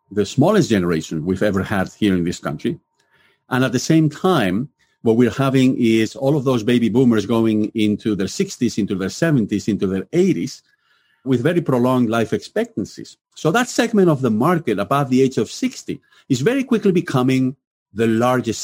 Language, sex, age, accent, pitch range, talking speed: English, male, 50-69, Spanish, 115-180 Hz, 180 wpm